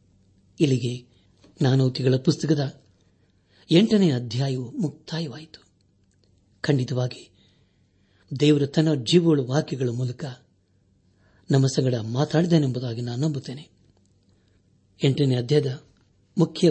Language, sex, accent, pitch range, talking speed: Kannada, male, native, 100-150 Hz, 70 wpm